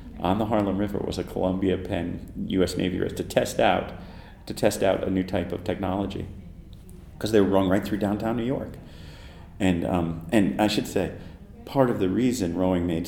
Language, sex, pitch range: English, male, 85-105 Hz